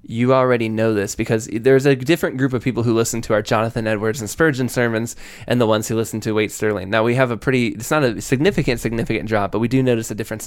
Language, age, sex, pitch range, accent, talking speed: English, 10-29, male, 105-125 Hz, American, 260 wpm